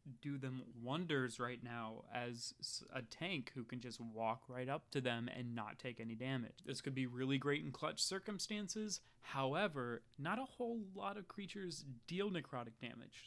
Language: English